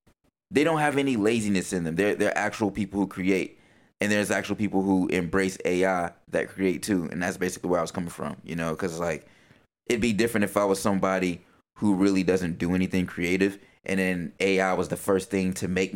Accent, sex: American, male